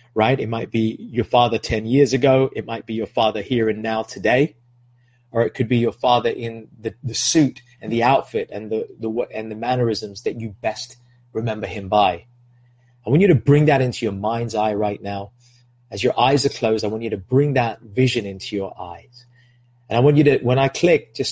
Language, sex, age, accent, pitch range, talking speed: English, male, 30-49, British, 110-125 Hz, 220 wpm